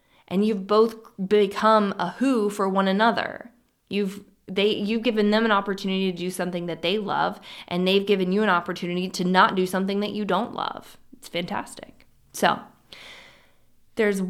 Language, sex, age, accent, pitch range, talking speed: English, female, 20-39, American, 180-215 Hz, 170 wpm